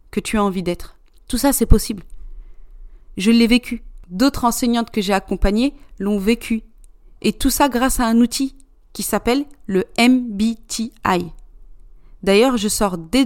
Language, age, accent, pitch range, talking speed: French, 30-49, French, 200-245 Hz, 155 wpm